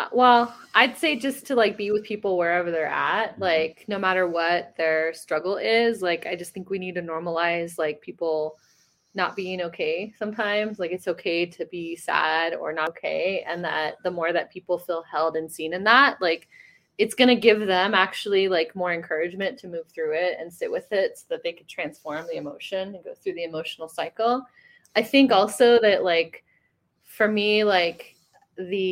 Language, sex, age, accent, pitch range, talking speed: English, female, 20-39, American, 175-220 Hz, 195 wpm